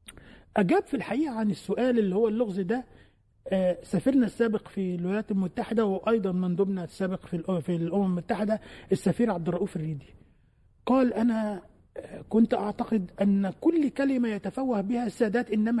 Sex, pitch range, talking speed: male, 190-250 Hz, 135 wpm